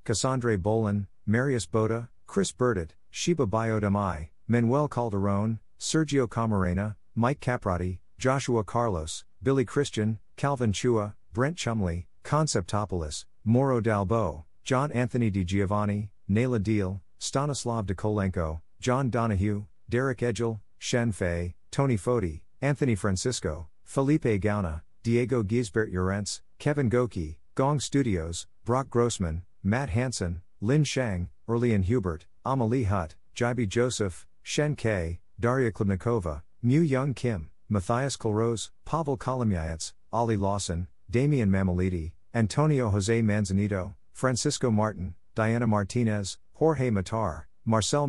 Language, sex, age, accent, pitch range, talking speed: English, male, 50-69, American, 95-125 Hz, 110 wpm